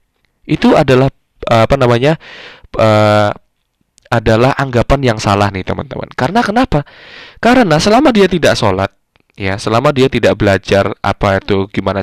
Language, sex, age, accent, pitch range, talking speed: Indonesian, male, 20-39, native, 105-150 Hz, 125 wpm